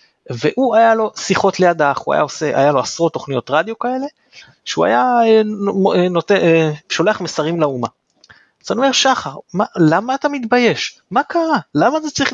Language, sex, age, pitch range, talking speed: Hebrew, male, 30-49, 135-210 Hz, 160 wpm